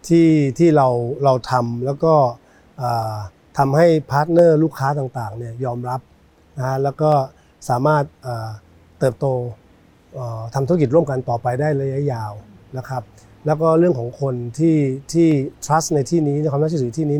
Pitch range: 125-155 Hz